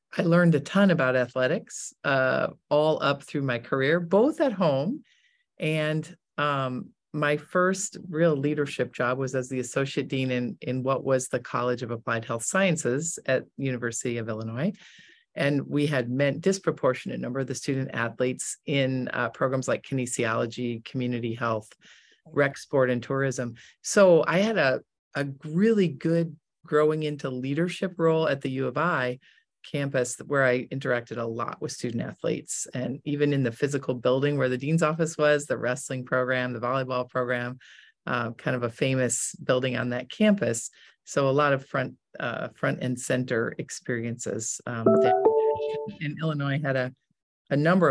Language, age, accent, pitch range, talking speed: English, 40-59, American, 125-155 Hz, 165 wpm